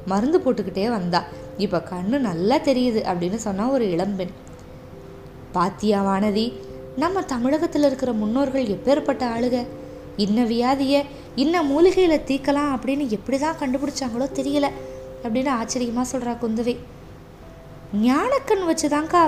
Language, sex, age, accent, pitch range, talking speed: Tamil, female, 20-39, native, 195-270 Hz, 110 wpm